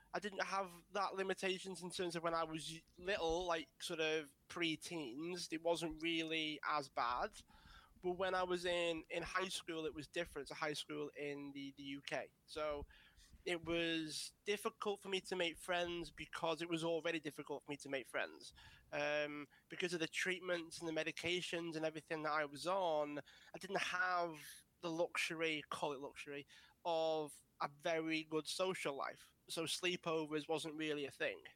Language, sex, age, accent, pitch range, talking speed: English, male, 20-39, British, 155-180 Hz, 175 wpm